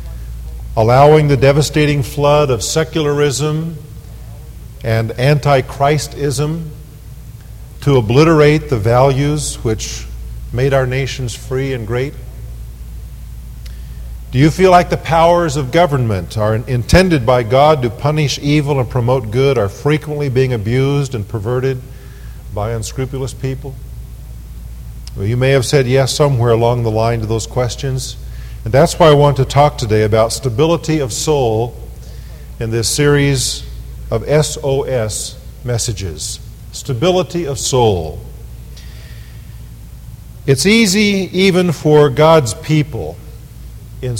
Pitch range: 115-150 Hz